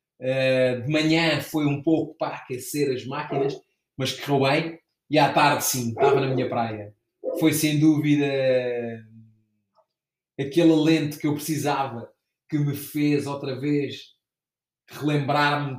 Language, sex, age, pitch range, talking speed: Portuguese, male, 20-39, 130-150 Hz, 130 wpm